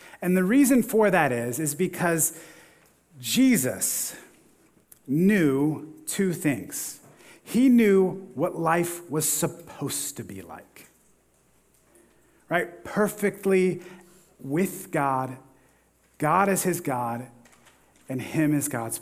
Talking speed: 105 wpm